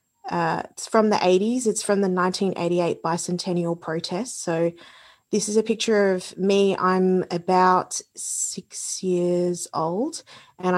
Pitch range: 170-190 Hz